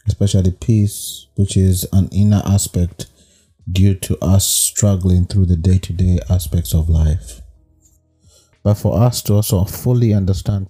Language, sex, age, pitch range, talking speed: English, male, 30-49, 90-105 Hz, 135 wpm